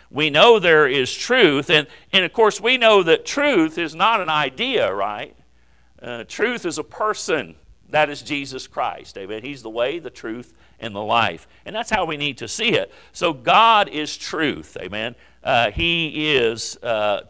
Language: English